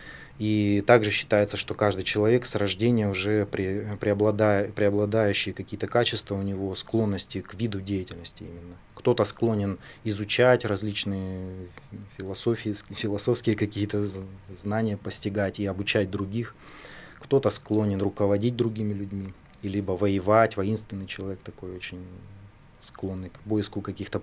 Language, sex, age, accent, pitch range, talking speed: Russian, male, 20-39, native, 95-110 Hz, 120 wpm